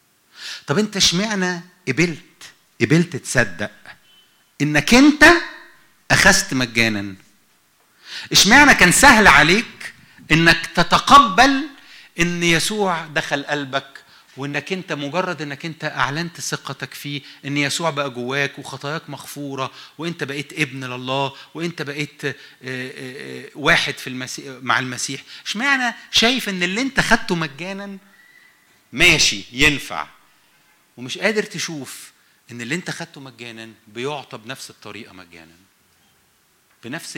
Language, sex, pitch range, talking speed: English, male, 120-170 Hz, 110 wpm